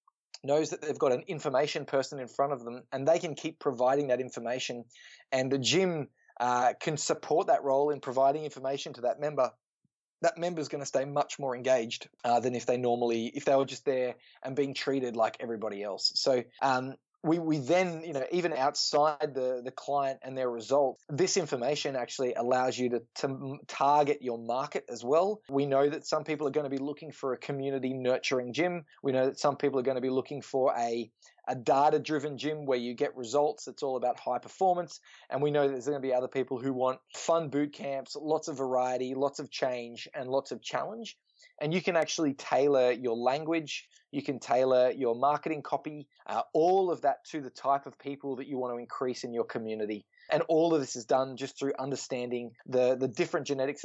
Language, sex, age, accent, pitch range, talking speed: English, male, 20-39, Australian, 125-145 Hz, 210 wpm